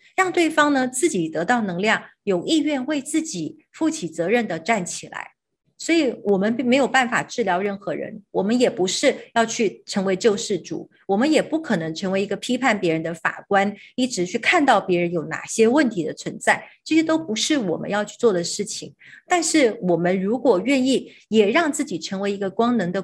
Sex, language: female, Chinese